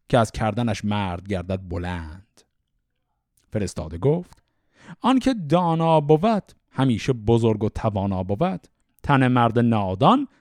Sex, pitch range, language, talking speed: male, 110-165 Hz, Persian, 110 wpm